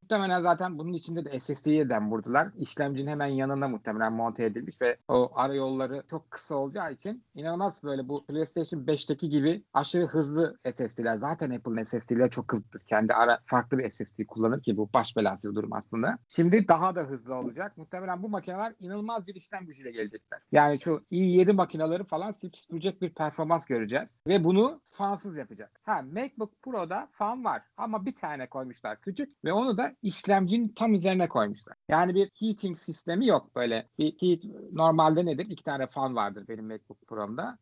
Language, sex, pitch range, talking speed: Turkish, male, 140-200 Hz, 170 wpm